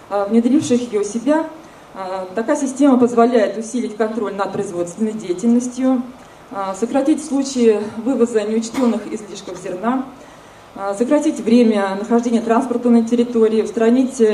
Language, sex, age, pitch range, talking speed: Russian, female, 20-39, 210-245 Hz, 105 wpm